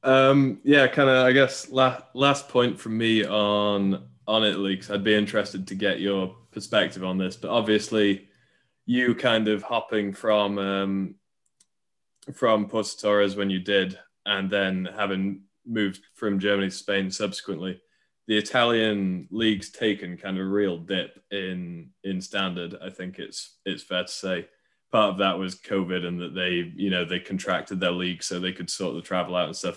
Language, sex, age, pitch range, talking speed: English, male, 20-39, 95-105 Hz, 175 wpm